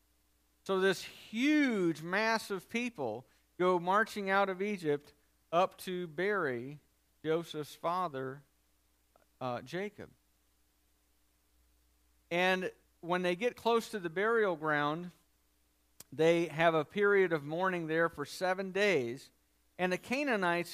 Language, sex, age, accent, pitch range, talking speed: English, male, 50-69, American, 140-195 Hz, 115 wpm